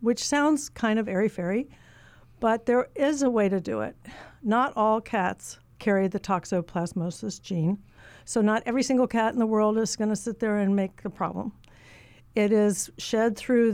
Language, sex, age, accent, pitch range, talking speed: English, female, 60-79, American, 190-225 Hz, 175 wpm